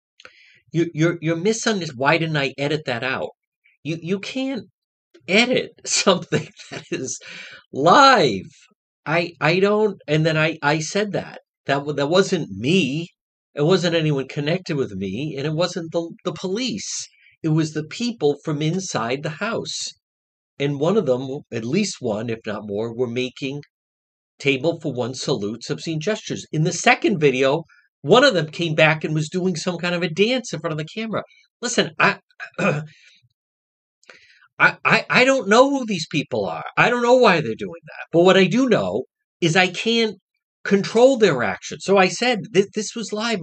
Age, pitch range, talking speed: 50-69, 145-210 Hz, 175 wpm